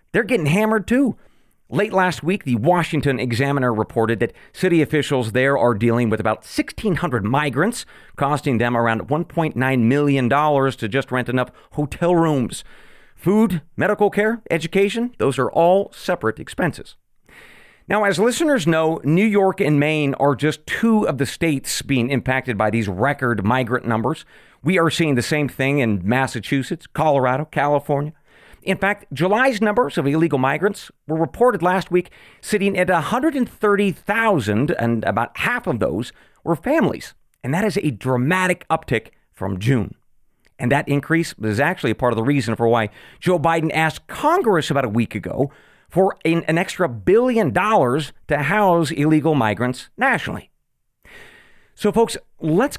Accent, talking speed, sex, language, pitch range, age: American, 150 wpm, male, English, 125-185 Hz, 40-59